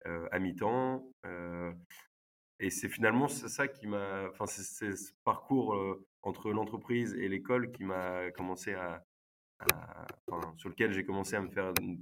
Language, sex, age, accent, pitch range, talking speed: French, male, 20-39, French, 85-105 Hz, 170 wpm